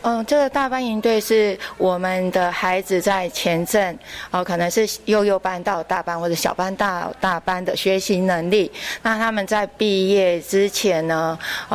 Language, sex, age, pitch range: Chinese, female, 30-49, 180-215 Hz